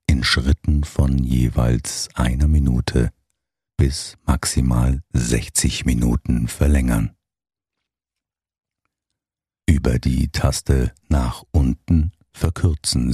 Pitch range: 65-85 Hz